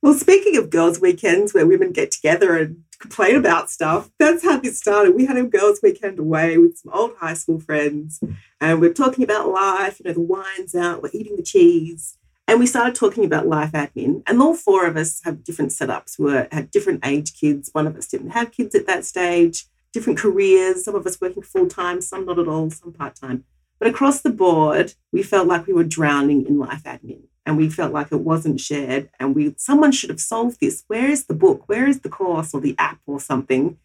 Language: English